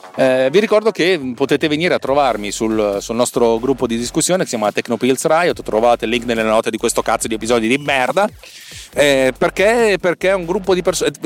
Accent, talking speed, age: native, 205 wpm, 40-59